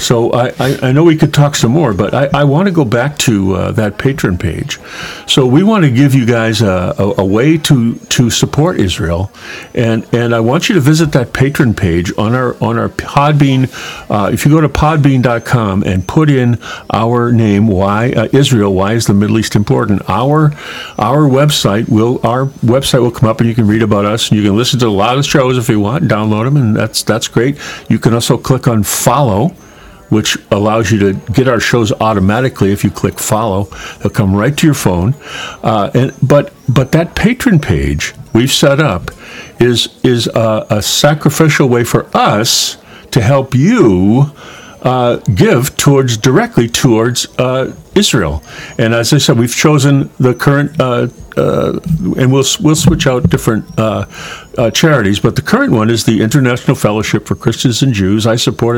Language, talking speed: English, 195 wpm